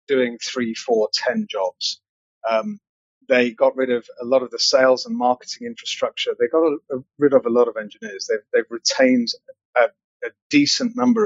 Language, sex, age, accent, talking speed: English, male, 30-49, British, 185 wpm